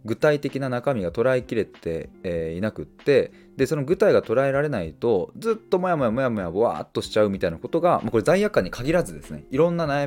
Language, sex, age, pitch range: Japanese, male, 20-39, 95-150 Hz